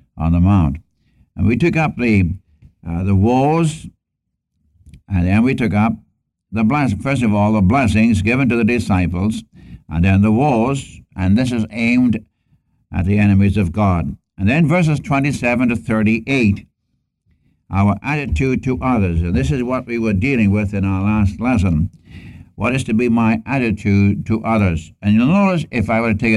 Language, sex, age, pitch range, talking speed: English, male, 60-79, 95-115 Hz, 175 wpm